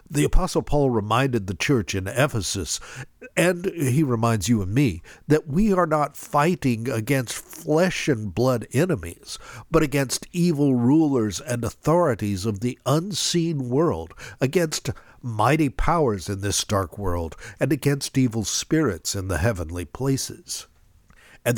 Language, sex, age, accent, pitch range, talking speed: English, male, 60-79, American, 110-155 Hz, 140 wpm